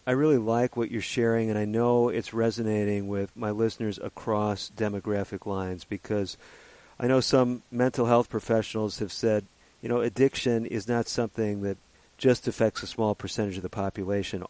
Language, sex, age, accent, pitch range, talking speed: English, male, 50-69, American, 105-125 Hz, 170 wpm